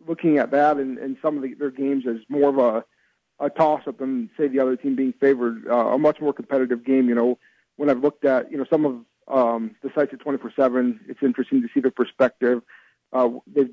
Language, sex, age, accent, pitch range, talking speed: English, male, 40-59, American, 125-140 Hz, 235 wpm